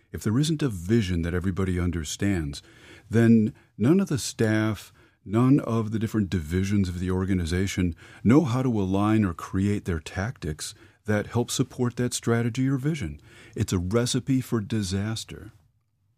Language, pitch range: English, 90-115 Hz